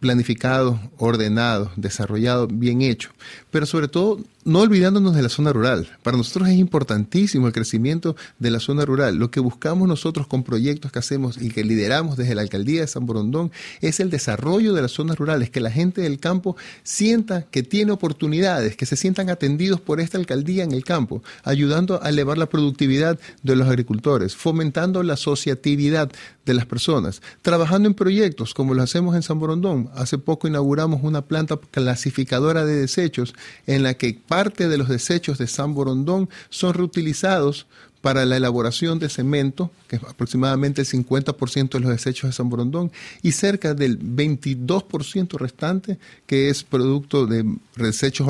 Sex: male